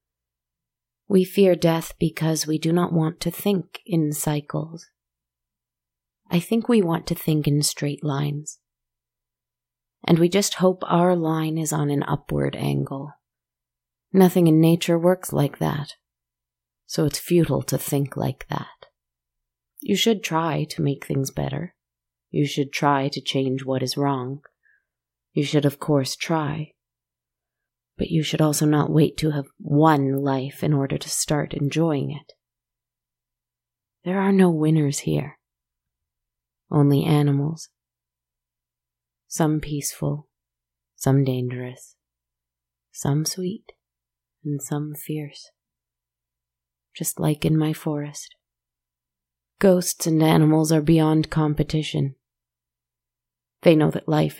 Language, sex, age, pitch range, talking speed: English, female, 30-49, 125-160 Hz, 125 wpm